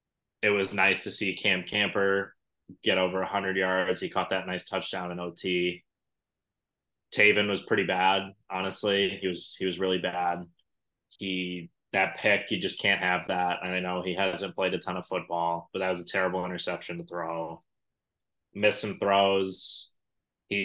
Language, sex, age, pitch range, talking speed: English, male, 20-39, 90-95 Hz, 170 wpm